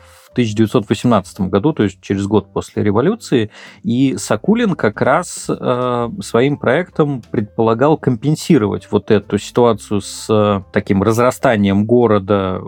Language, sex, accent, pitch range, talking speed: Russian, male, native, 105-130 Hz, 125 wpm